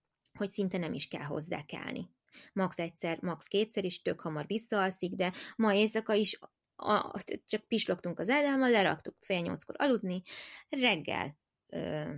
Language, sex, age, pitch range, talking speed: Hungarian, female, 20-39, 170-235 Hz, 150 wpm